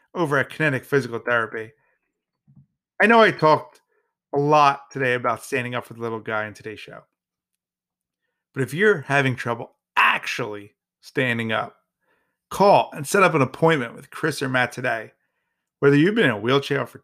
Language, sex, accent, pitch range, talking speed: English, male, American, 125-165 Hz, 170 wpm